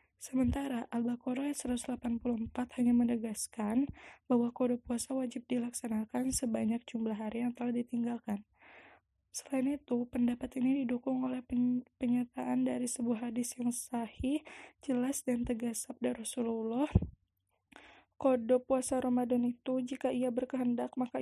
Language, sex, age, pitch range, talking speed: Indonesian, female, 10-29, 245-265 Hz, 115 wpm